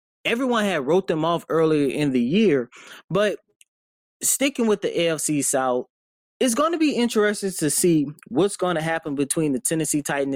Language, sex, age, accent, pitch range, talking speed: English, male, 20-39, American, 145-195 Hz, 175 wpm